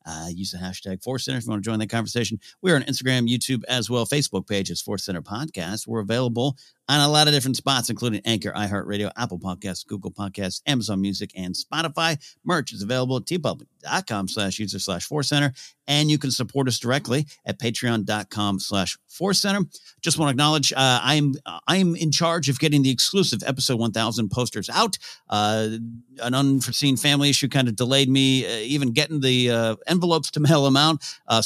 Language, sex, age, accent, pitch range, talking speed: English, male, 50-69, American, 105-140 Hz, 195 wpm